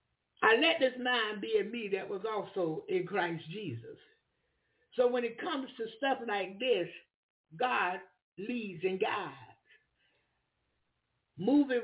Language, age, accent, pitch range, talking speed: English, 60-79, American, 195-310 Hz, 130 wpm